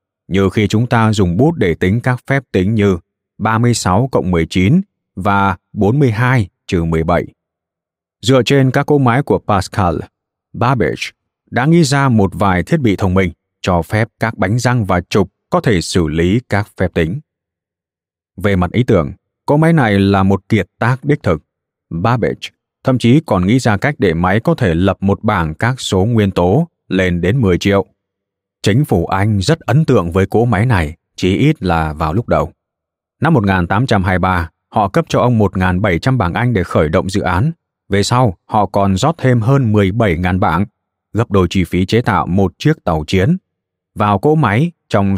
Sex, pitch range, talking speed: male, 90-125 Hz, 185 wpm